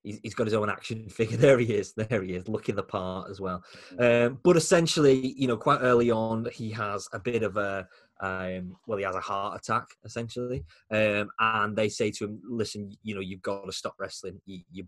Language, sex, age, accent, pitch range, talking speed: English, male, 20-39, British, 100-120 Hz, 220 wpm